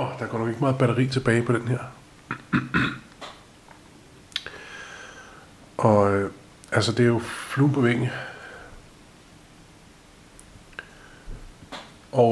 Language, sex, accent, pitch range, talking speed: Danish, male, native, 105-125 Hz, 95 wpm